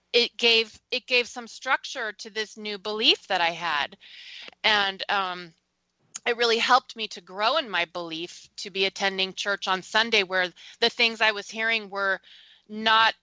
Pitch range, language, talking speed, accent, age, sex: 185-225 Hz, English, 170 wpm, American, 30-49, female